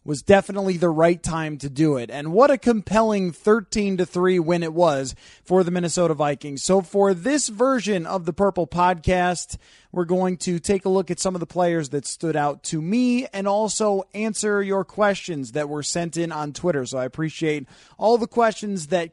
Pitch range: 155-200 Hz